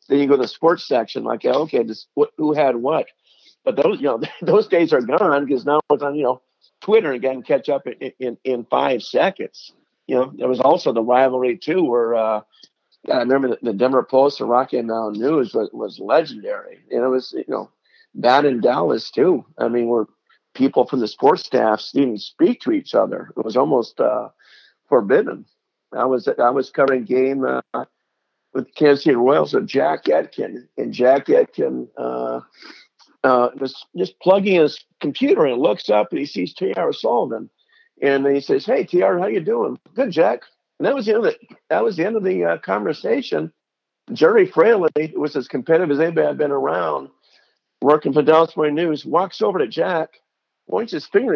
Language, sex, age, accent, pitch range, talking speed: English, male, 50-69, American, 125-185 Hz, 195 wpm